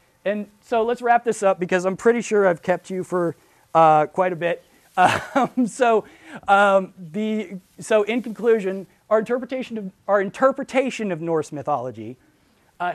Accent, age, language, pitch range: American, 30-49, English, 165-205 Hz